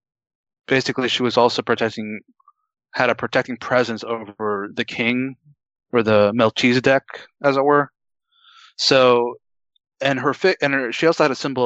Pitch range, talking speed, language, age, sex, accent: 110-130 Hz, 145 wpm, English, 20-39, male, American